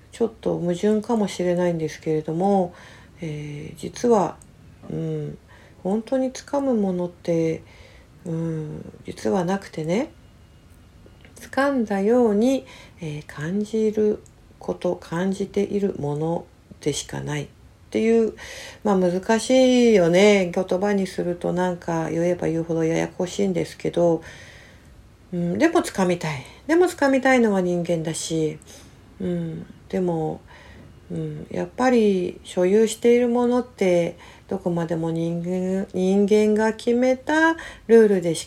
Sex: female